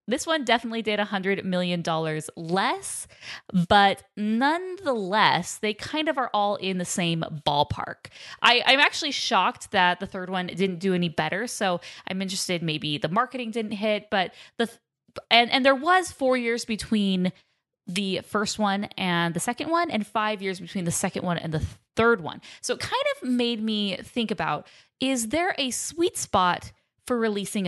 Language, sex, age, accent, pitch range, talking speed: English, female, 10-29, American, 180-240 Hz, 180 wpm